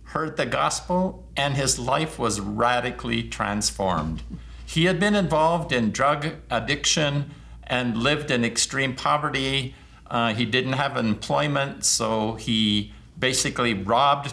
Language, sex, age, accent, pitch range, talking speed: English, male, 50-69, American, 105-140 Hz, 125 wpm